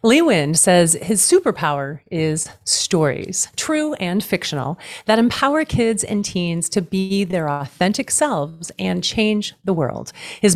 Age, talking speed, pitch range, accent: 40-59, 140 wpm, 170-230 Hz, American